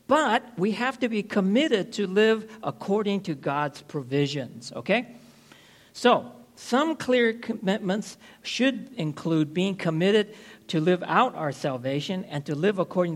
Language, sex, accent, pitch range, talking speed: English, male, American, 155-215 Hz, 135 wpm